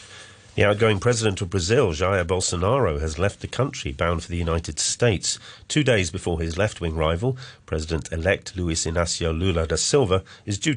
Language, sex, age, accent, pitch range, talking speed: English, male, 40-59, British, 85-115 Hz, 165 wpm